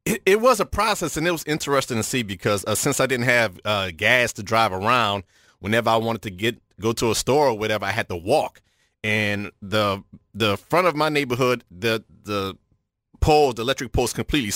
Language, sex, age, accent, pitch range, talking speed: English, male, 30-49, American, 105-125 Hz, 205 wpm